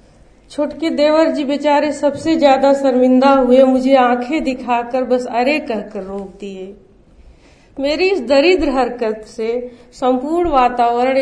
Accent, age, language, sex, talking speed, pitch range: native, 40-59, Hindi, female, 125 wpm, 235-300 Hz